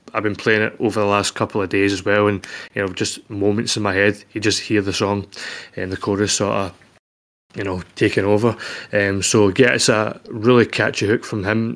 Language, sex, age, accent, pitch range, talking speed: English, male, 20-39, British, 100-115 Hz, 225 wpm